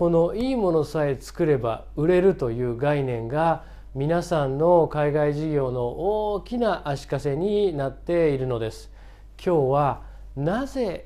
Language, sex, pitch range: Japanese, male, 120-175 Hz